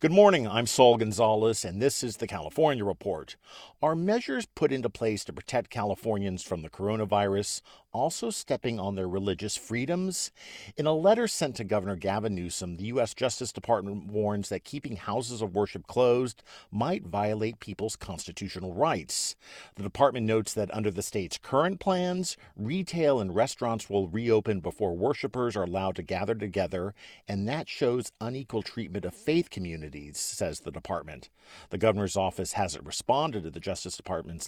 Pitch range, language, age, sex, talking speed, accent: 95-125 Hz, English, 50-69, male, 160 wpm, American